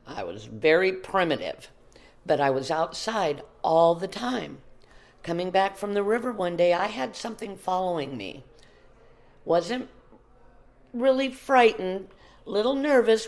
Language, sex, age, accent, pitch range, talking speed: English, female, 50-69, American, 160-225 Hz, 125 wpm